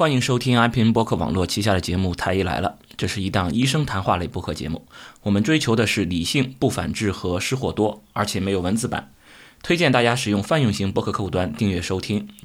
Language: Chinese